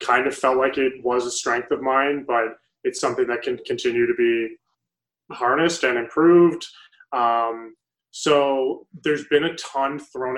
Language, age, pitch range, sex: English, 20-39, 130-185 Hz, male